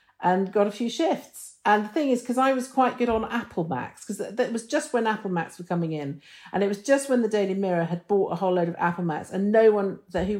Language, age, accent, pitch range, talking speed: English, 50-69, British, 155-210 Hz, 285 wpm